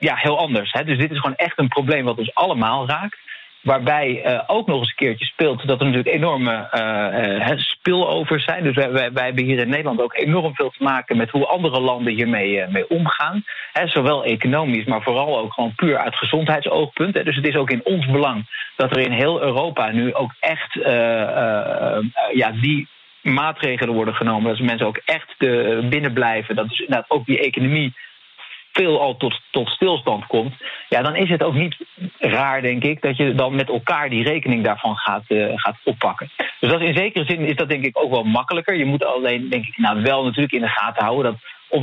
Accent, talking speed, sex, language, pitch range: Dutch, 210 wpm, male, Dutch, 120-150 Hz